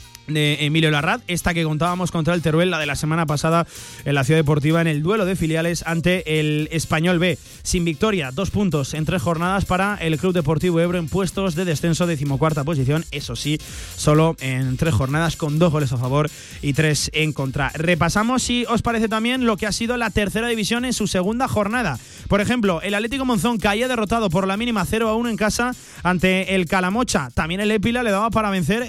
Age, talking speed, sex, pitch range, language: 30-49, 205 wpm, male, 160-215 Hz, Spanish